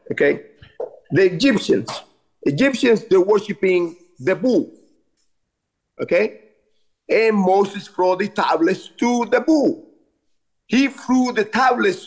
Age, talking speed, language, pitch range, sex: 50-69, 105 wpm, English, 170-255 Hz, male